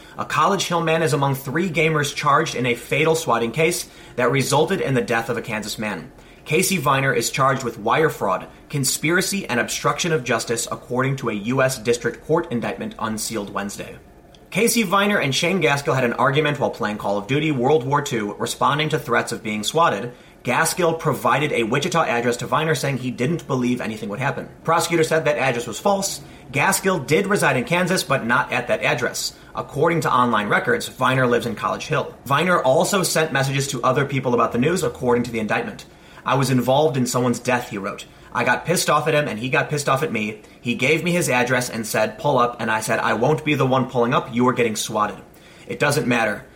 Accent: American